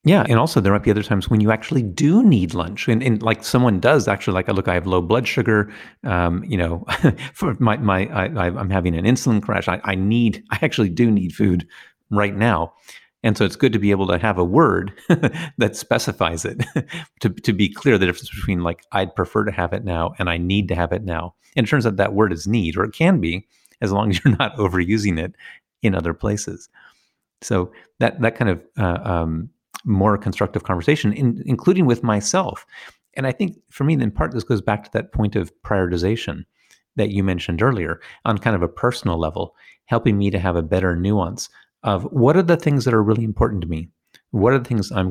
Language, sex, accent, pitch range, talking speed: English, male, American, 90-115 Hz, 220 wpm